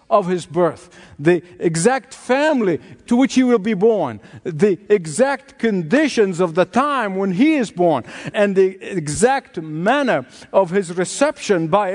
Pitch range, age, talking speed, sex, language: 170-235 Hz, 50-69, 150 wpm, male, English